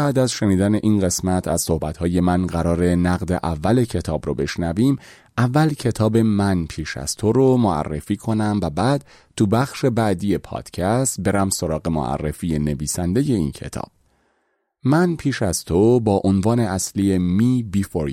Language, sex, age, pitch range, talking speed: Persian, male, 30-49, 85-115 Hz, 150 wpm